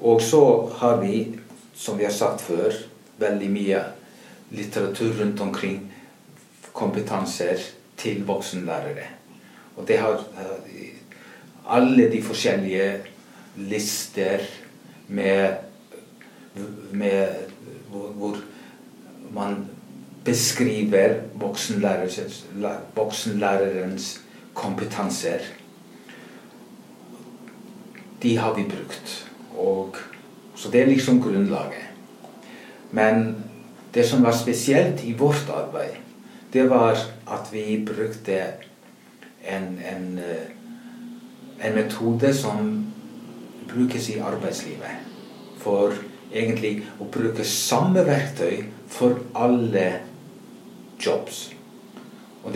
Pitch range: 100-125 Hz